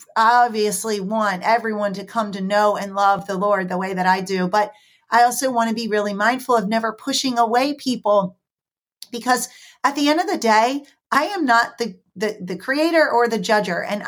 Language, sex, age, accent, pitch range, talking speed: English, female, 40-59, American, 200-245 Hz, 200 wpm